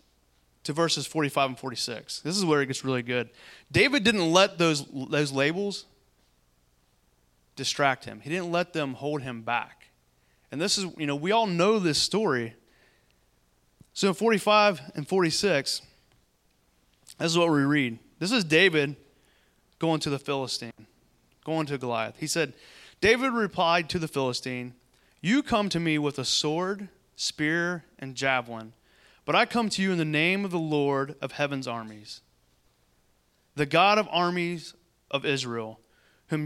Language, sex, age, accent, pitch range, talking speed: English, male, 30-49, American, 125-175 Hz, 155 wpm